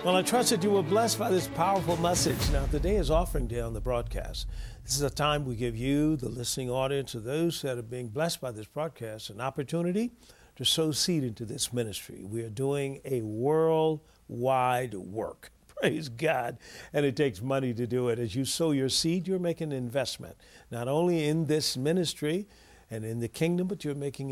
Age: 50-69